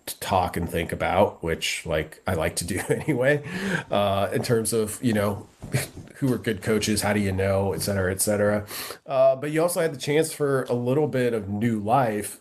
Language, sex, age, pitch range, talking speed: English, male, 30-49, 90-120 Hz, 215 wpm